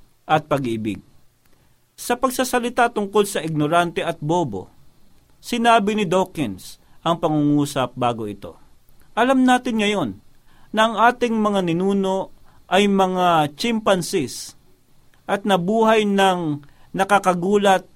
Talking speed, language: 105 wpm, Filipino